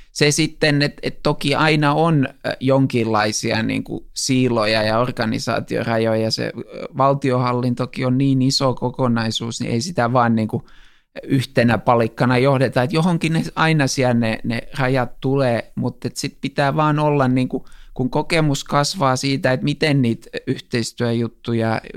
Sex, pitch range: male, 120-140 Hz